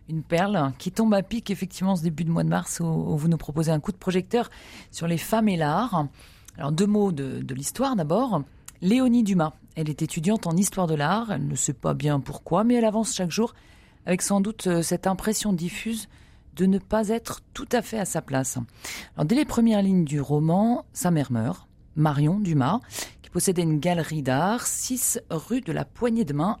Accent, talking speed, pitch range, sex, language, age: French, 210 wpm, 155-210 Hz, female, French, 40-59